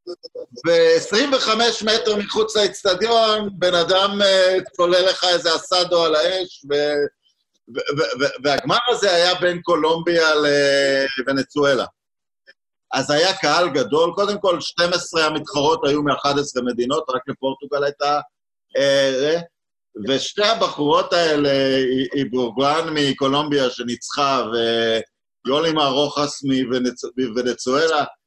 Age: 50-69